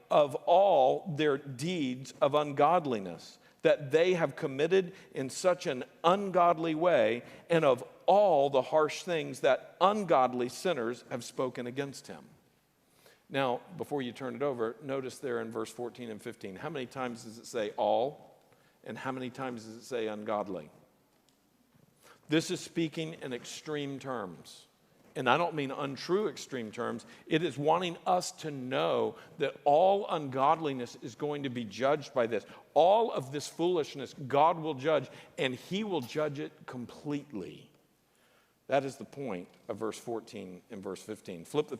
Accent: American